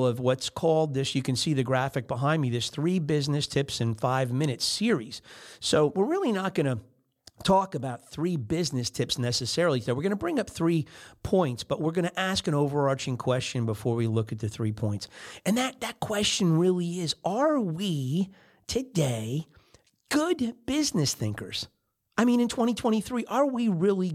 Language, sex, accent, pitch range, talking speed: English, male, American, 130-185 Hz, 180 wpm